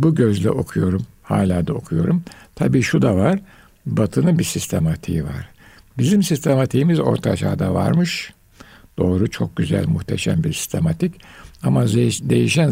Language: Turkish